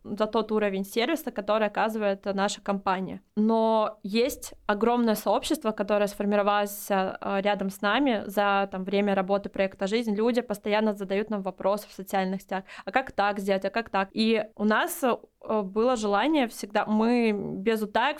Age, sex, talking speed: 20-39, female, 150 wpm